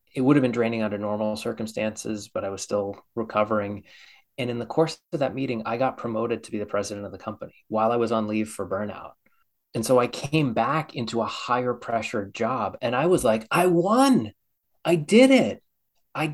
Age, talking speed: 30-49, 210 wpm